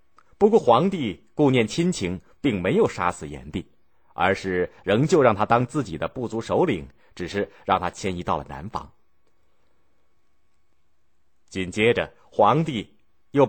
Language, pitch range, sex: Chinese, 80-135 Hz, male